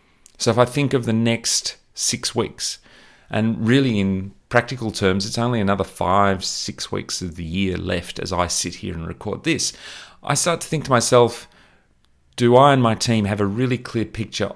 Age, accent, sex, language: 30-49, Australian, male, English